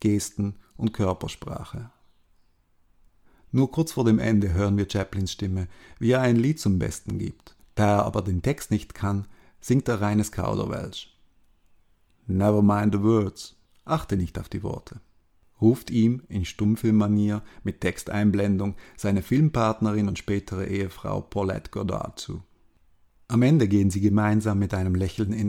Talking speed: 145 wpm